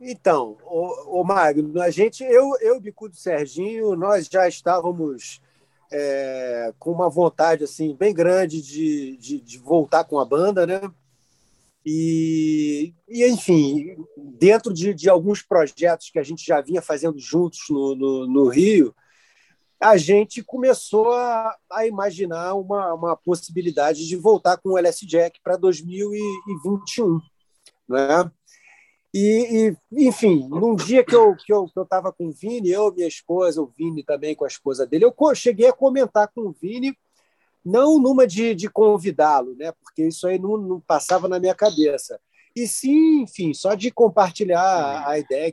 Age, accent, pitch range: 40-59, Brazilian, 155-215 Hz